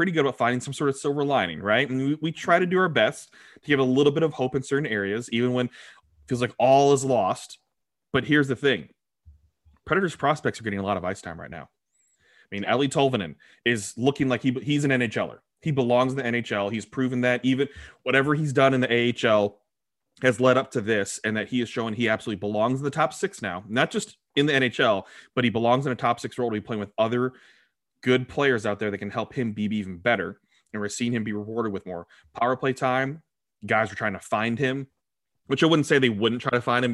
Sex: male